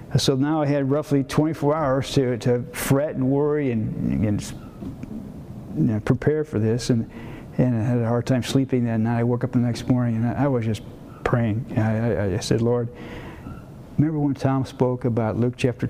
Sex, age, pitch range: male, 50-69, 120-140 Hz